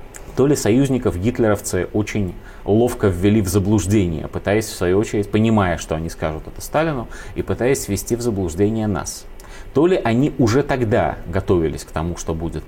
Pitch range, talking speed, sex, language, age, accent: 90-120 Hz, 160 wpm, male, Russian, 30-49, native